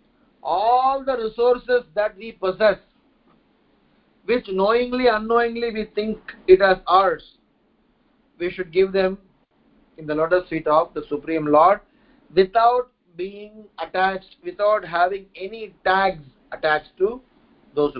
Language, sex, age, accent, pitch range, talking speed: English, male, 50-69, Indian, 165-215 Hz, 120 wpm